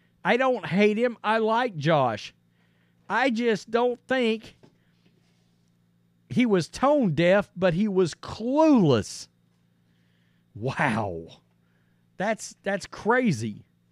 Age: 50-69